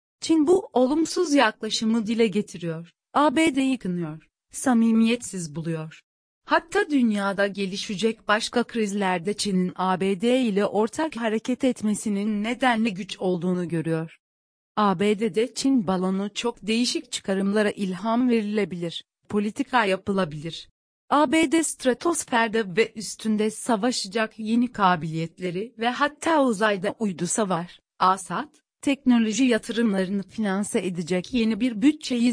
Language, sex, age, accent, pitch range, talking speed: Turkish, female, 40-59, native, 190-250 Hz, 100 wpm